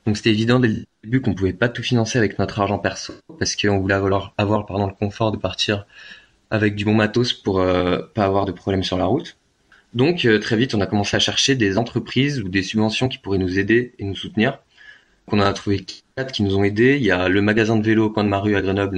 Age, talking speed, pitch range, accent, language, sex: 20-39, 250 wpm, 95-115 Hz, French, French, male